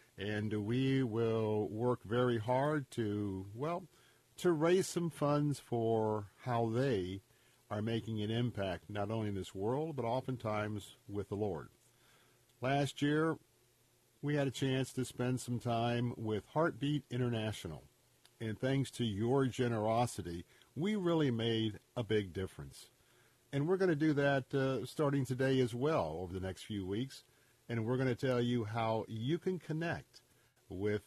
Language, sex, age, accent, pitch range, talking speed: English, male, 50-69, American, 110-145 Hz, 155 wpm